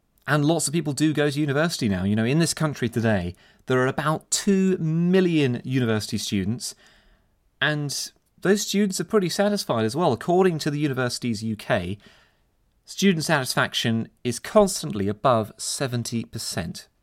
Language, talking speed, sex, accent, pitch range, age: English, 145 wpm, male, British, 110-160 Hz, 30-49